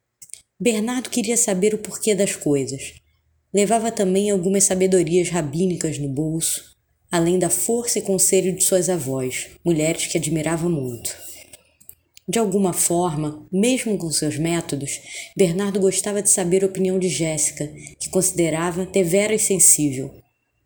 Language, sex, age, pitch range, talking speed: Portuguese, female, 20-39, 160-195 Hz, 135 wpm